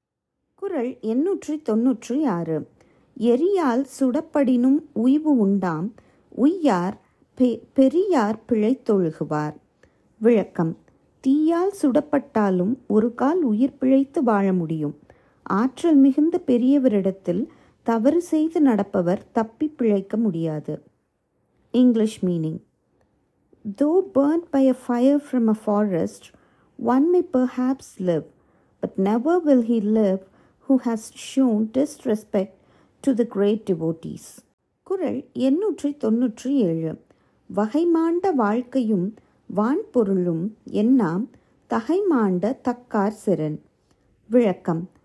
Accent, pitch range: native, 205-280 Hz